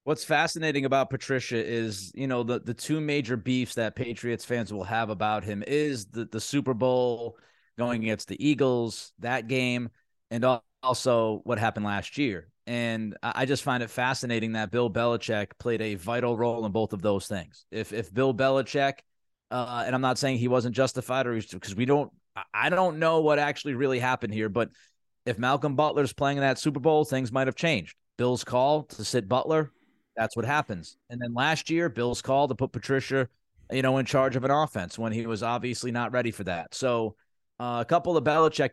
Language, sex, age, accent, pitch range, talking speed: English, male, 30-49, American, 115-135 Hz, 200 wpm